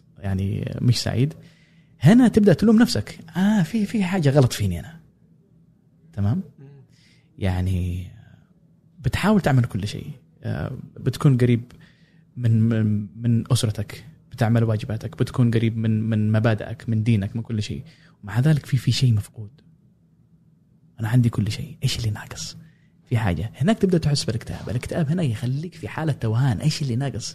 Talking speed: 145 wpm